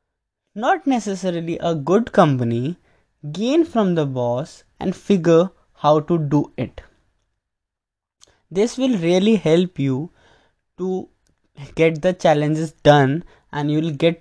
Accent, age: Indian, 20-39